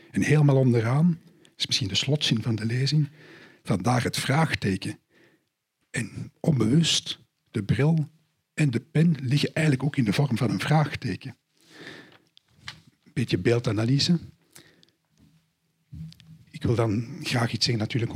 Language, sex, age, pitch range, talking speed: Dutch, male, 50-69, 120-150 Hz, 130 wpm